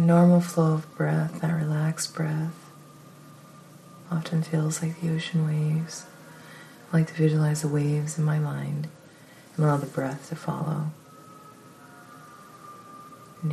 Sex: female